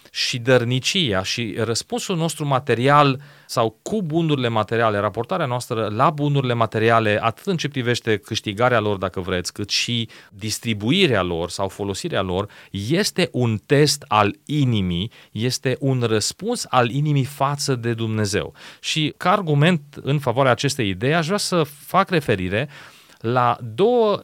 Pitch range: 115-150 Hz